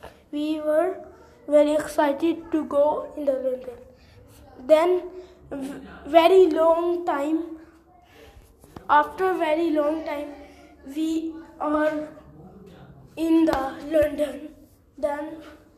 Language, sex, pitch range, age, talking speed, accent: English, female, 290-325 Hz, 20-39, 90 wpm, Indian